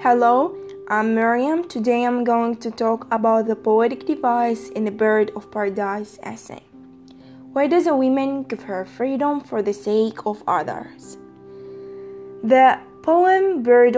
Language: English